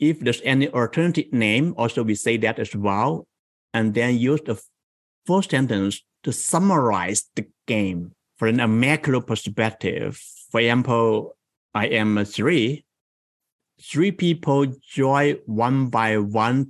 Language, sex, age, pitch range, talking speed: English, male, 60-79, 110-140 Hz, 135 wpm